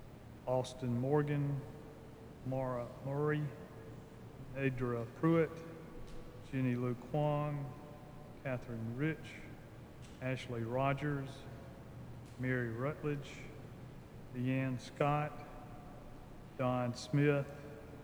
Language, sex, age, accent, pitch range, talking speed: English, male, 40-59, American, 125-145 Hz, 65 wpm